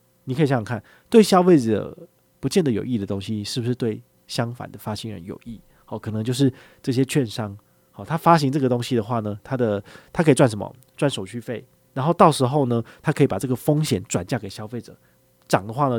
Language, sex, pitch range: Chinese, male, 110-150 Hz